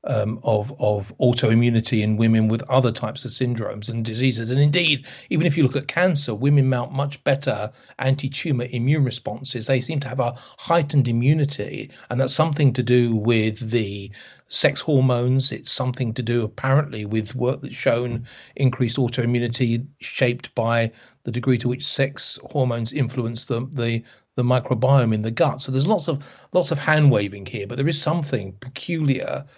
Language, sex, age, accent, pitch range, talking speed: English, male, 40-59, British, 115-140 Hz, 170 wpm